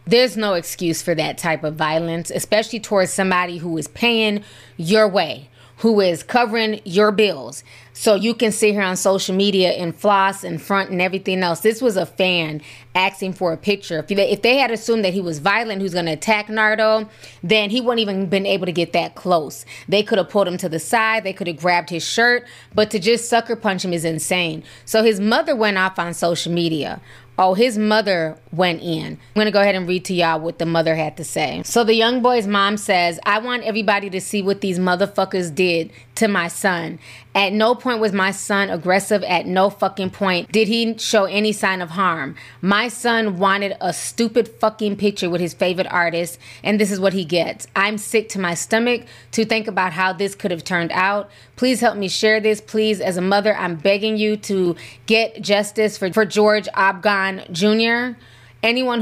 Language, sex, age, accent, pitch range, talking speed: English, female, 20-39, American, 175-215 Hz, 205 wpm